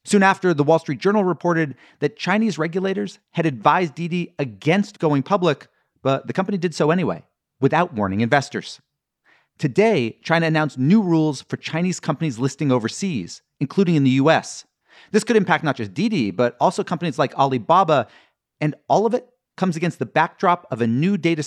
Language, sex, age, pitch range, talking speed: English, male, 40-59, 135-190 Hz, 175 wpm